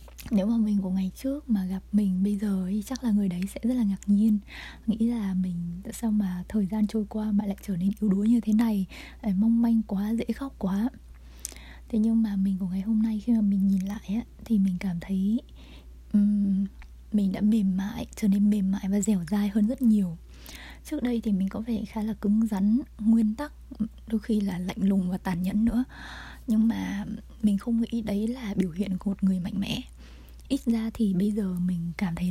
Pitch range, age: 190-220 Hz, 20-39